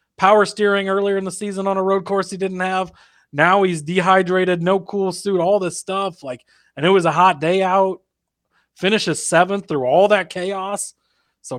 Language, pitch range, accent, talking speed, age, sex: English, 140-175 Hz, American, 190 wpm, 20-39, male